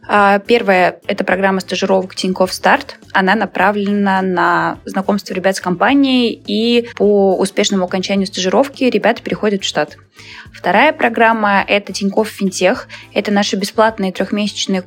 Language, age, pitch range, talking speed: Russian, 20-39, 185-220 Hz, 135 wpm